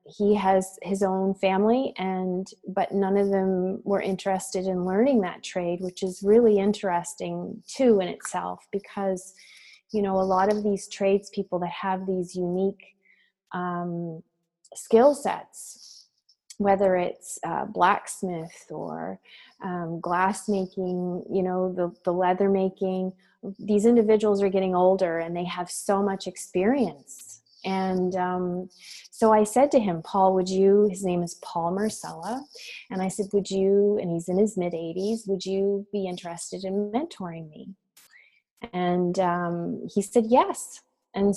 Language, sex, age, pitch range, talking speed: English, female, 30-49, 180-205 Hz, 150 wpm